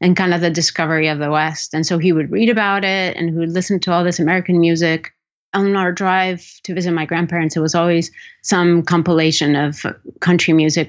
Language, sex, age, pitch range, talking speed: English, female, 30-49, 165-200 Hz, 215 wpm